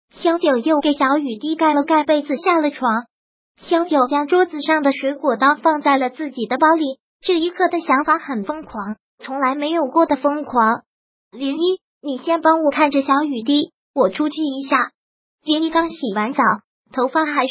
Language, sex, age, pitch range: Chinese, male, 20-39, 270-330 Hz